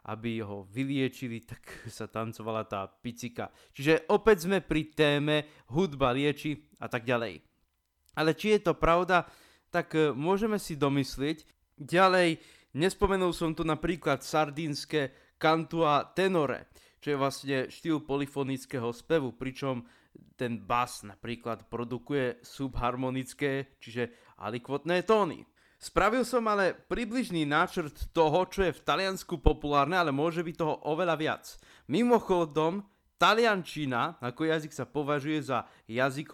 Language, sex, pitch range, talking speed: Slovak, male, 125-165 Hz, 125 wpm